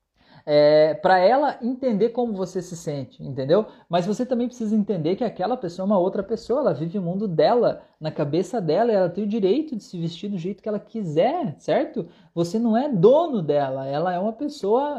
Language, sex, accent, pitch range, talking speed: Portuguese, male, Brazilian, 170-255 Hz, 210 wpm